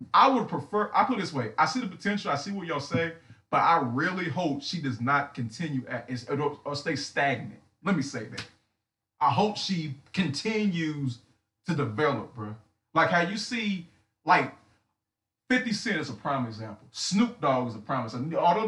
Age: 30-49